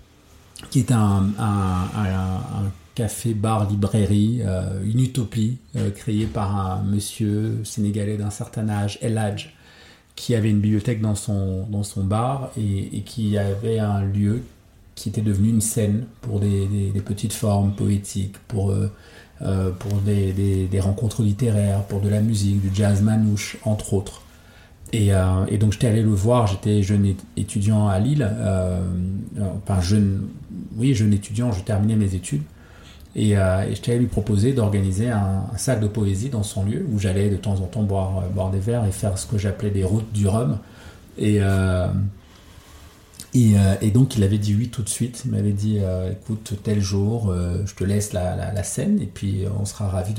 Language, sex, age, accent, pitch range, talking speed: French, male, 40-59, French, 95-110 Hz, 190 wpm